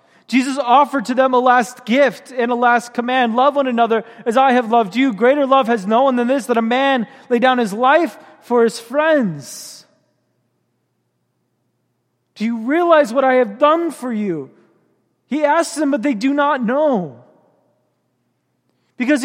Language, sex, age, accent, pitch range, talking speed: English, male, 30-49, American, 225-295 Hz, 170 wpm